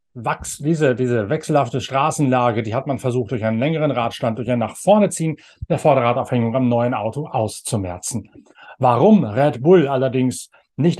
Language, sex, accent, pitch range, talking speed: German, male, German, 115-145 Hz, 155 wpm